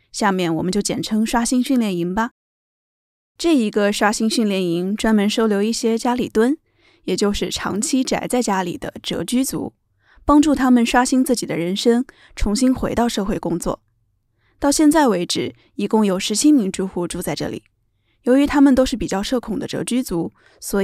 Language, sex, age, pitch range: Chinese, female, 10-29, 185-255 Hz